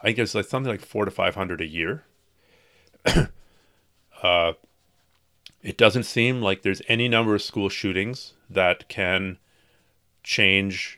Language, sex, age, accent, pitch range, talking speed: English, male, 40-59, American, 90-115 Hz, 135 wpm